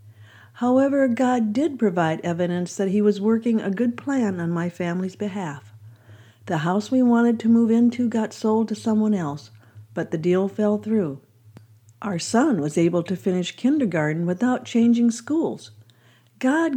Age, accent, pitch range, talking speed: 60-79, American, 150-230 Hz, 155 wpm